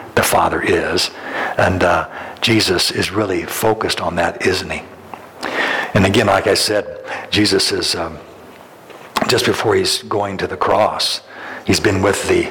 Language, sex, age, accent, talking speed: English, male, 60-79, American, 155 wpm